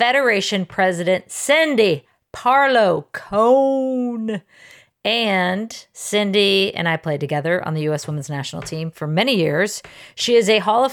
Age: 40-59